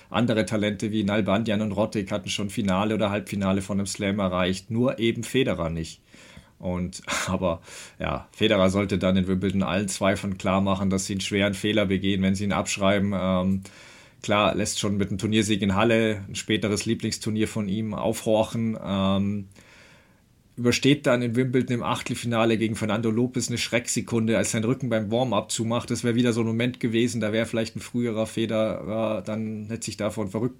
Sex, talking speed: male, 180 wpm